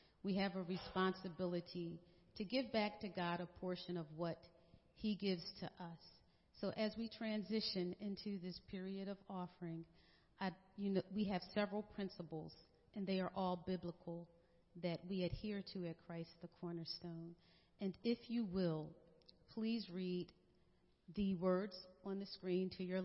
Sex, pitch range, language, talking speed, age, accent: female, 170-210 Hz, English, 145 wpm, 40-59, American